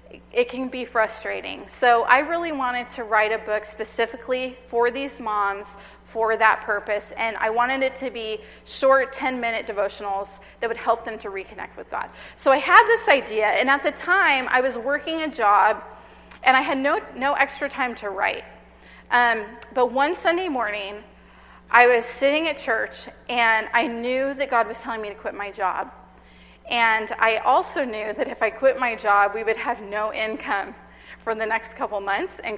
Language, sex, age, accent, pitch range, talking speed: English, female, 30-49, American, 220-270 Hz, 190 wpm